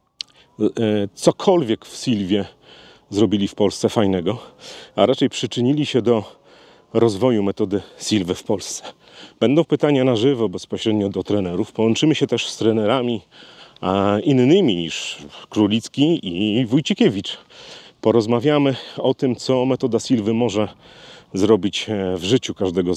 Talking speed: 120 wpm